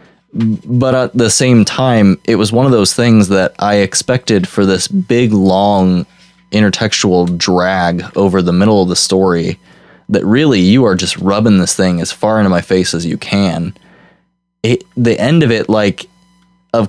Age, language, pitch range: 20-39, English, 90-105 Hz